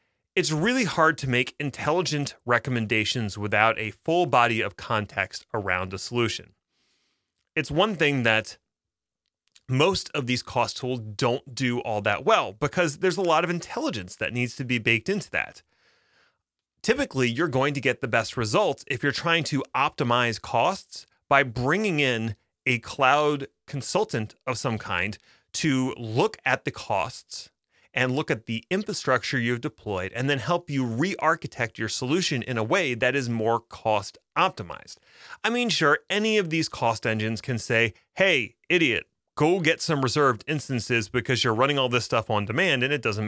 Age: 30-49